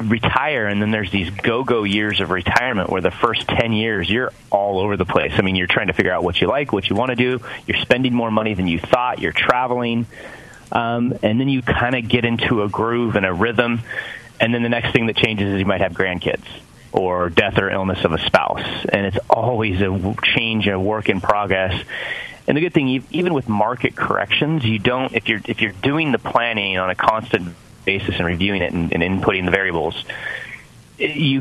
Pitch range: 95-120 Hz